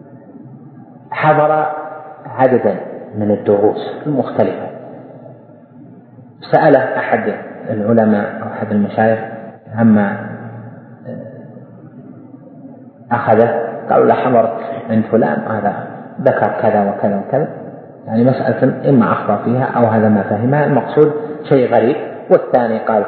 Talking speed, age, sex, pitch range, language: 95 wpm, 40-59, male, 110-145 Hz, Arabic